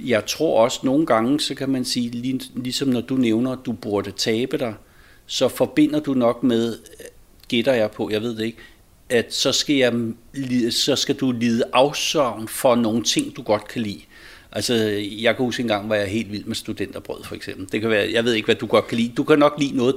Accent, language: native, Danish